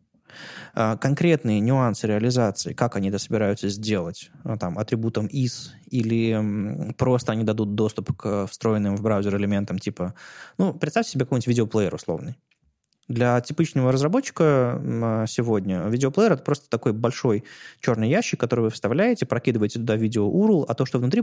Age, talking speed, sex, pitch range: 20-39, 140 wpm, male, 110-145 Hz